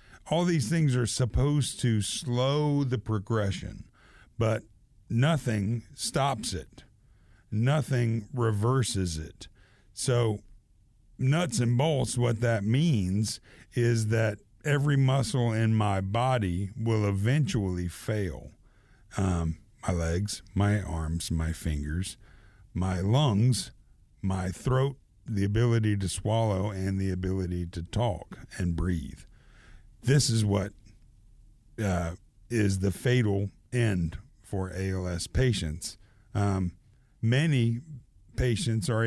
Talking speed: 110 wpm